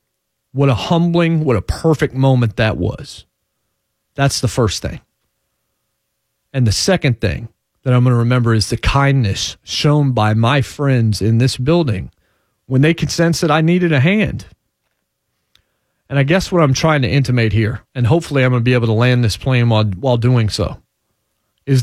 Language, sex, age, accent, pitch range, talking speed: English, male, 40-59, American, 110-145 Hz, 180 wpm